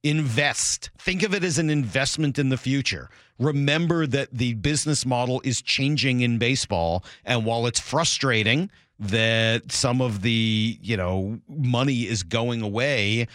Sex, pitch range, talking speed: male, 110-145 Hz, 150 wpm